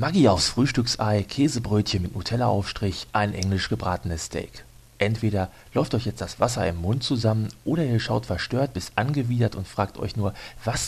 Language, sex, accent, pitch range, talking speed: German, male, German, 100-125 Hz, 170 wpm